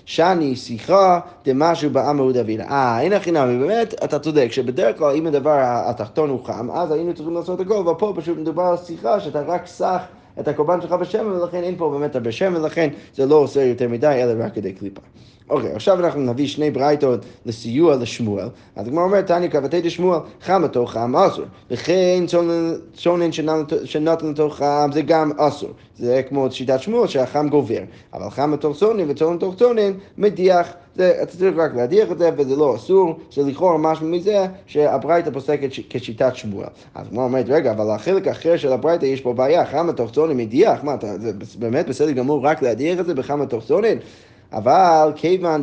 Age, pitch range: 20-39, 130-175 Hz